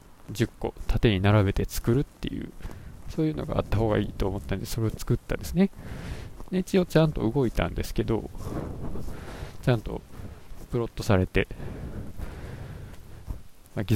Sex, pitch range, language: male, 95-120 Hz, Japanese